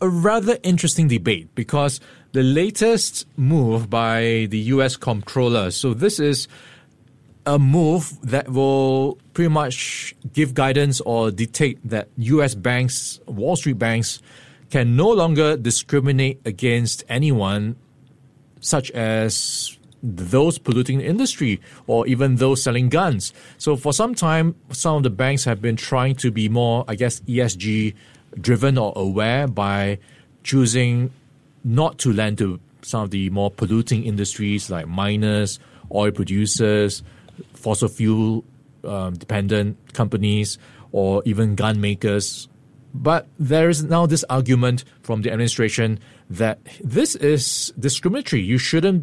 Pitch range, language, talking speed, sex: 110-140 Hz, English, 130 wpm, male